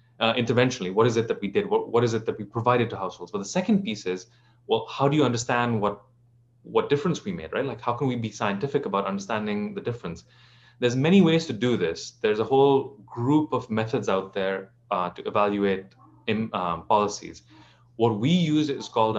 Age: 30-49